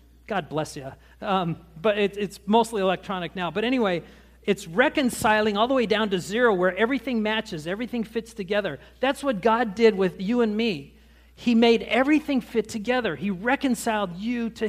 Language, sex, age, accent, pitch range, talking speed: English, male, 50-69, American, 145-220 Hz, 170 wpm